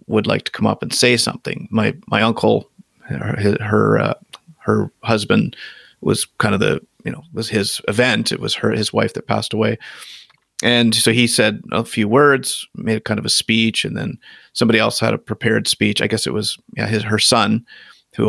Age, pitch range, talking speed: 30-49, 110-120 Hz, 205 wpm